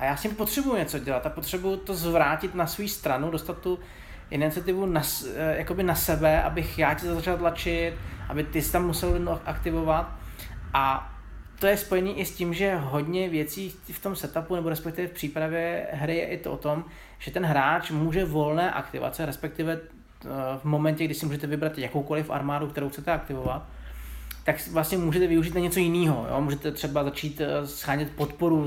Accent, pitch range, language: native, 145-170 Hz, Czech